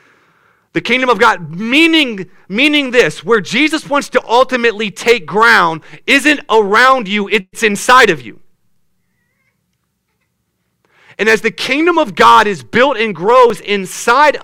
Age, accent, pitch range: 40-59, American, 205-275 Hz